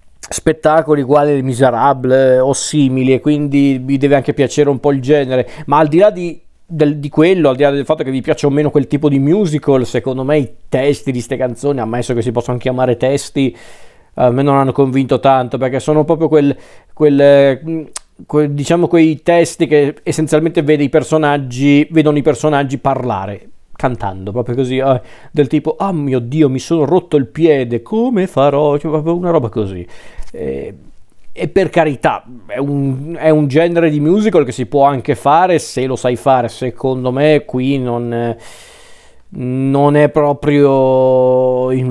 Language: Italian